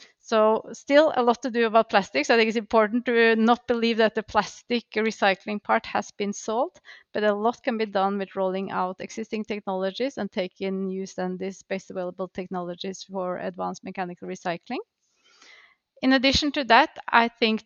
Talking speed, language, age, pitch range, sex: 175 wpm, English, 30-49, 190-220 Hz, female